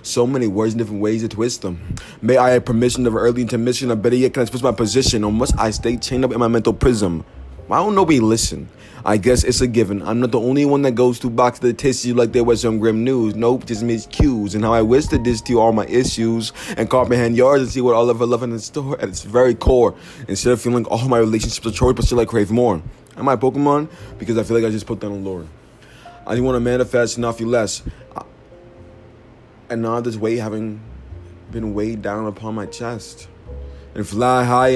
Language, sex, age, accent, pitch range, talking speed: English, male, 20-39, American, 105-125 Hz, 245 wpm